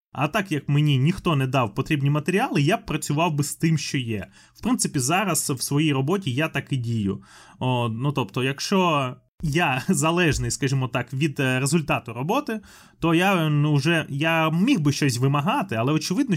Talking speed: 170 wpm